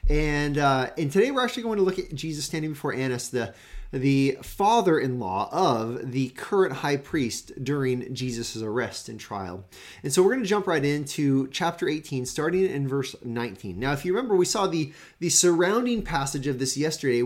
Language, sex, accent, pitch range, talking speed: English, male, American, 130-185 Hz, 190 wpm